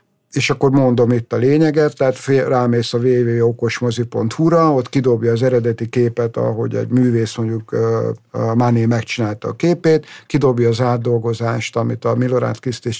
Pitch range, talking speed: 115-135 Hz, 150 wpm